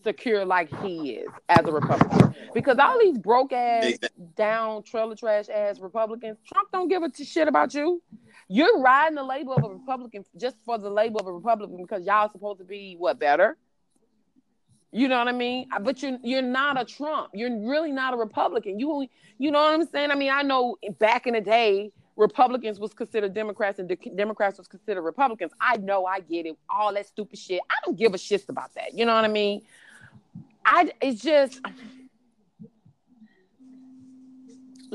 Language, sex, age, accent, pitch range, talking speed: English, female, 30-49, American, 200-260 Hz, 185 wpm